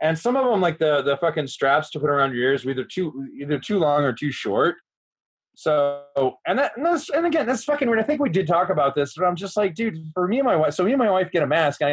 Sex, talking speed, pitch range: male, 300 wpm, 125-185 Hz